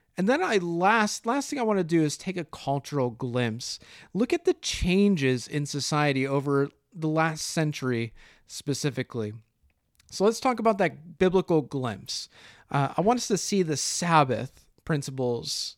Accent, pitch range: American, 145-210 Hz